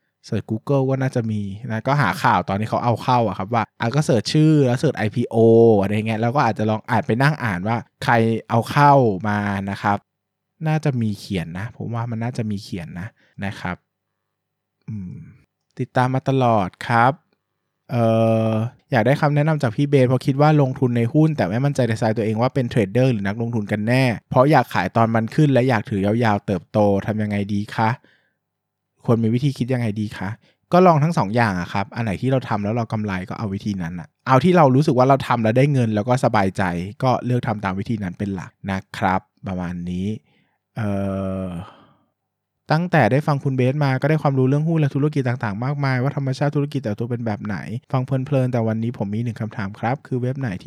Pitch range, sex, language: 105-130 Hz, male, Thai